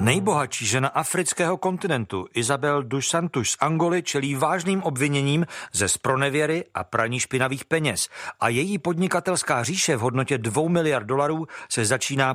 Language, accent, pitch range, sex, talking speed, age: Czech, native, 125-165 Hz, male, 140 wpm, 50-69